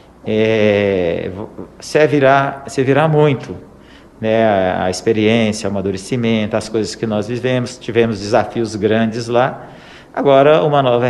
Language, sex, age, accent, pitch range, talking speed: Portuguese, male, 50-69, Brazilian, 105-135 Hz, 115 wpm